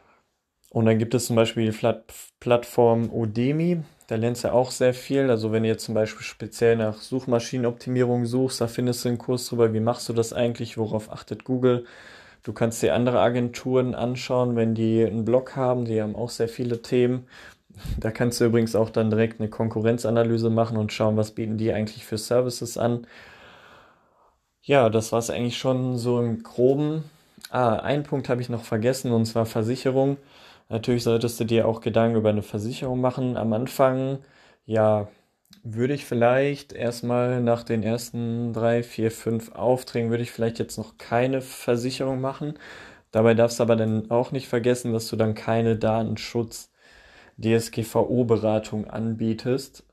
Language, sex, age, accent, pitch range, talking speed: German, male, 20-39, German, 110-125 Hz, 170 wpm